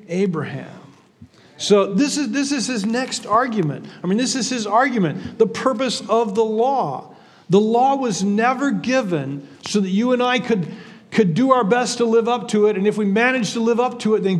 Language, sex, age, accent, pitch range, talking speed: English, male, 40-59, American, 190-240 Hz, 210 wpm